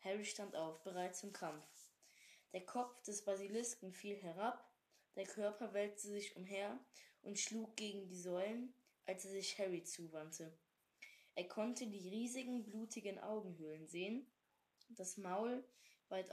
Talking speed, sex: 135 wpm, female